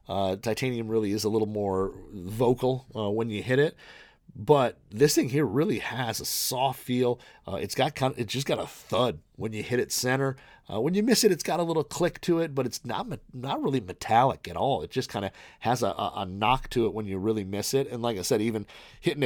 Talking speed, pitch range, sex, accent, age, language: 240 wpm, 105-135 Hz, male, American, 30-49, English